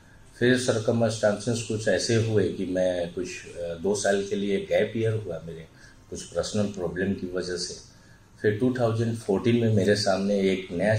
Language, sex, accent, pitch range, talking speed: Hindi, male, native, 90-115 Hz, 160 wpm